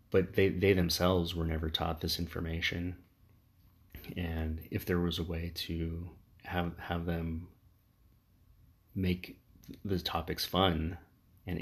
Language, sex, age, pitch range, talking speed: English, male, 30-49, 80-95 Hz, 125 wpm